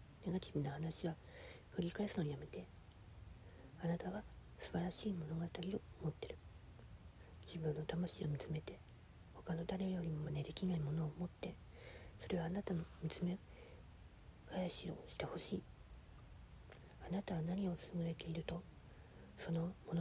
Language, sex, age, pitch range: Japanese, female, 40-59, 145-185 Hz